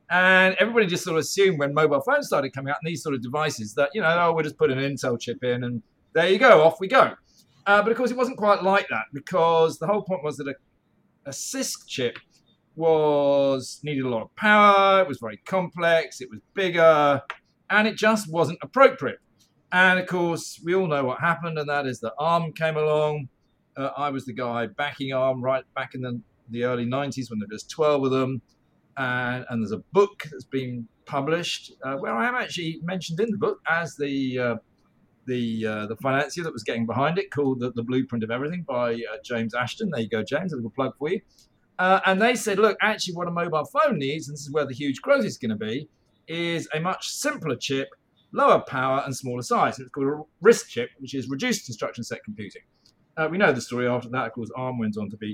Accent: British